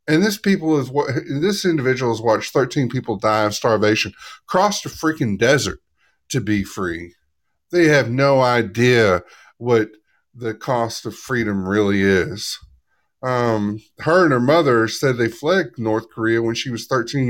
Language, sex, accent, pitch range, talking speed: English, male, American, 115-160 Hz, 160 wpm